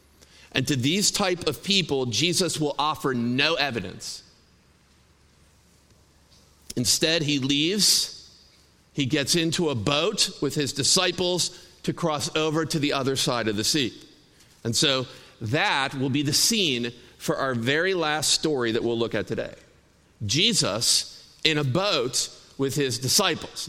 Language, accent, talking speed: English, American, 140 wpm